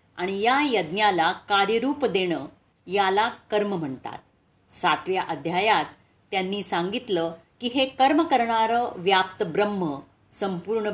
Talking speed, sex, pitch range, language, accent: 105 wpm, female, 175-240 Hz, Marathi, native